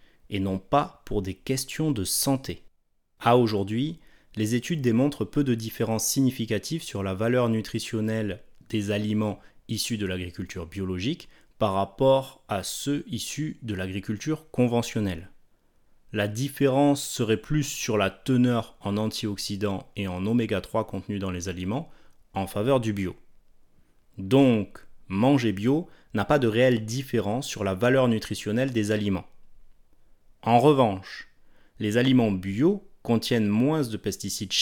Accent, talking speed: French, 135 wpm